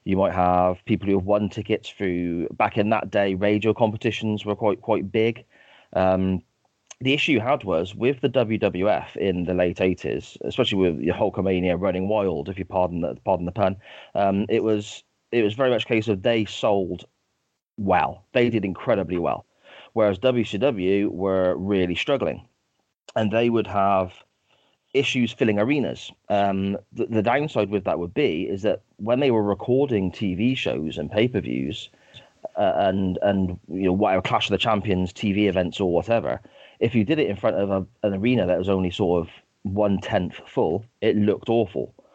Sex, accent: male, British